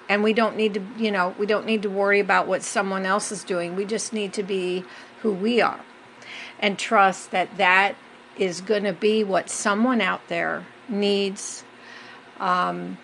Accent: American